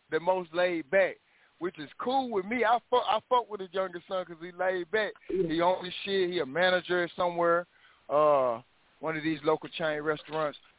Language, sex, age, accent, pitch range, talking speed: English, male, 20-39, American, 155-195 Hz, 200 wpm